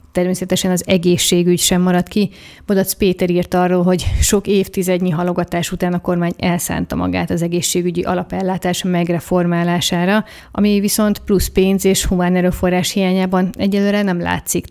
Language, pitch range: Hungarian, 175-190 Hz